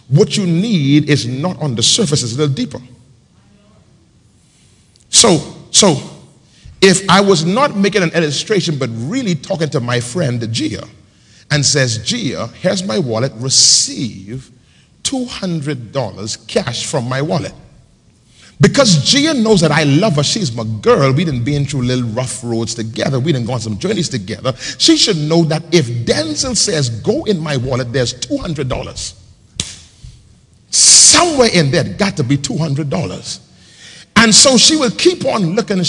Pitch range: 130-220 Hz